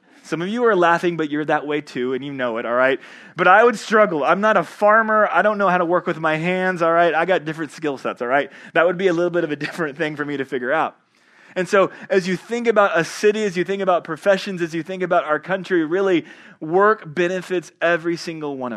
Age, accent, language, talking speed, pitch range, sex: 30-49, American, English, 260 wpm, 145-185 Hz, male